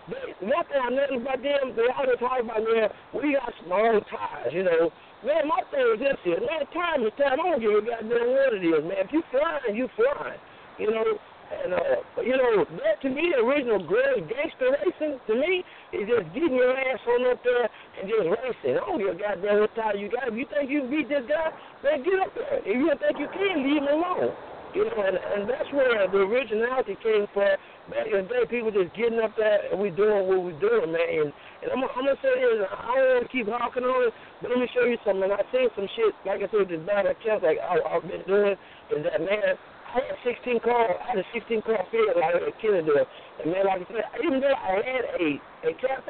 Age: 60-79